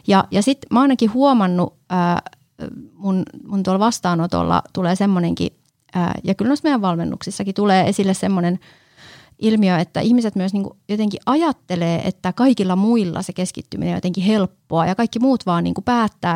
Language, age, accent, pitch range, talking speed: Finnish, 30-49, native, 175-220 Hz, 150 wpm